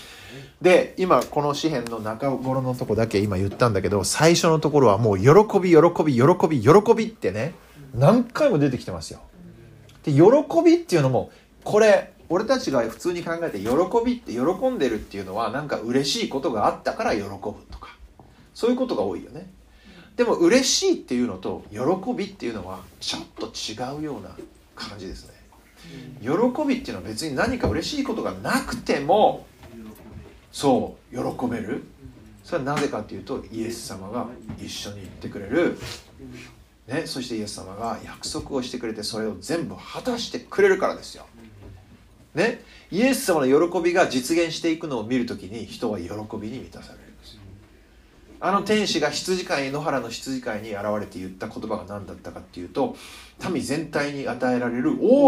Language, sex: Japanese, male